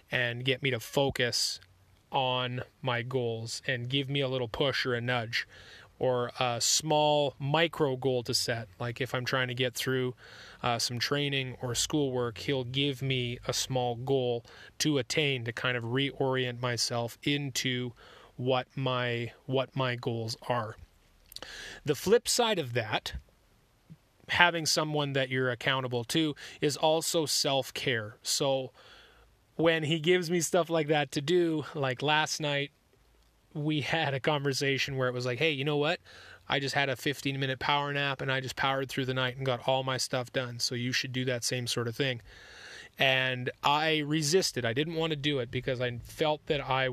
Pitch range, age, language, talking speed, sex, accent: 125-145 Hz, 30-49, English, 175 wpm, male, American